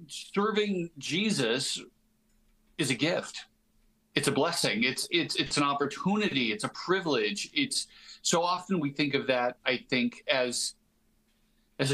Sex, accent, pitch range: male, American, 140-205 Hz